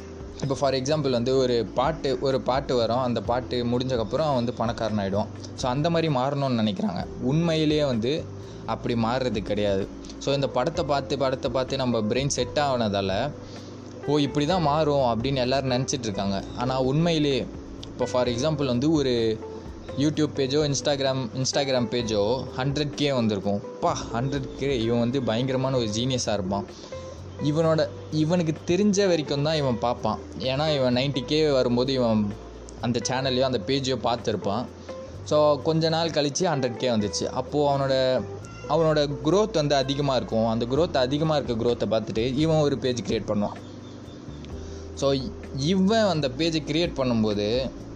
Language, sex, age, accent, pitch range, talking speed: Tamil, male, 20-39, native, 105-140 Hz, 145 wpm